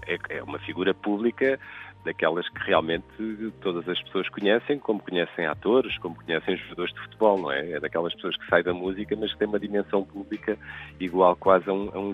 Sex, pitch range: male, 90-120 Hz